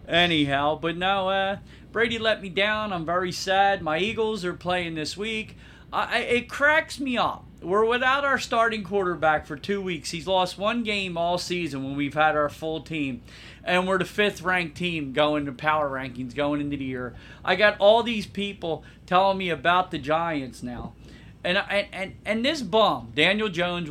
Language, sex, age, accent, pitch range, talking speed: English, male, 40-59, American, 155-210 Hz, 185 wpm